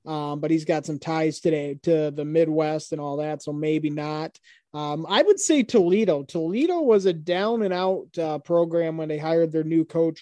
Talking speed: 205 wpm